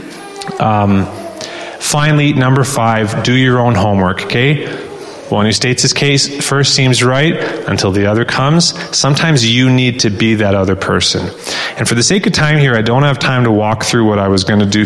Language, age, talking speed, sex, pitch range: English, 30-49, 195 wpm, male, 105-135 Hz